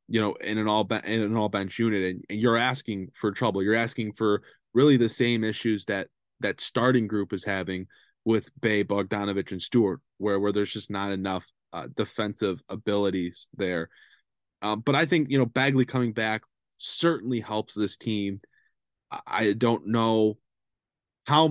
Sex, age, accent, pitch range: male, 20-39, American, 105-125 Hz